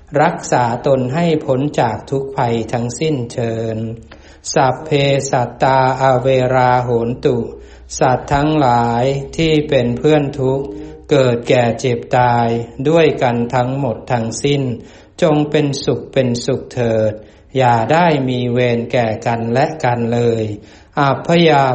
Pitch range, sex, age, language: 115-140 Hz, male, 60-79, Thai